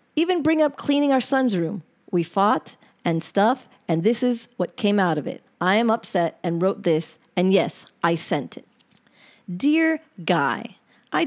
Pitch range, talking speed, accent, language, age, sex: 180-245 Hz, 175 wpm, American, English, 40-59, female